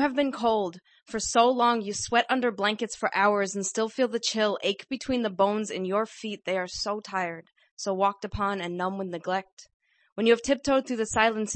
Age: 20-39